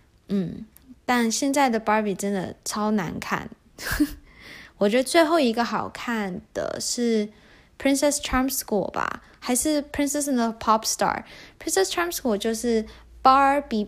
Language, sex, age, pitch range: Chinese, female, 10-29, 205-245 Hz